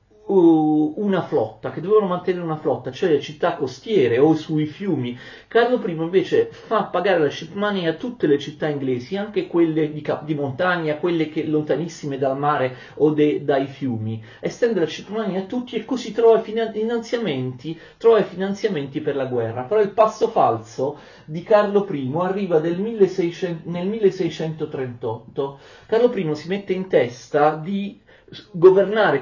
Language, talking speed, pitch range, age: Italian, 160 wpm, 135-195 Hz, 40-59